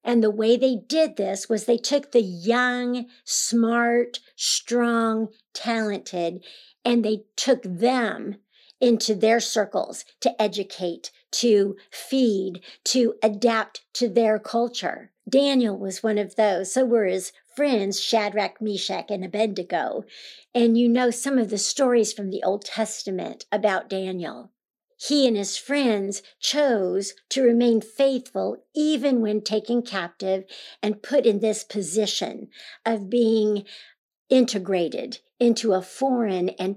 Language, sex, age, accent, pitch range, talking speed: English, female, 50-69, American, 200-240 Hz, 130 wpm